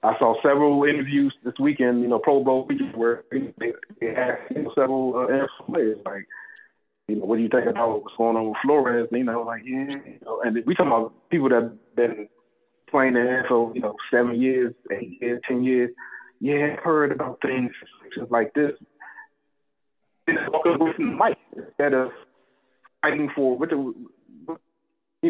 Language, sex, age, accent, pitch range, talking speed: English, male, 30-49, American, 115-145 Hz, 170 wpm